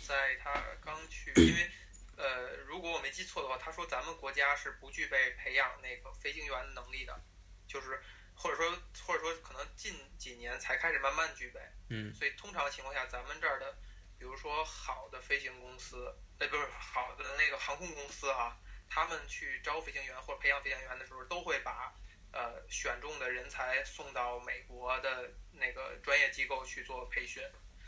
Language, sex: English, male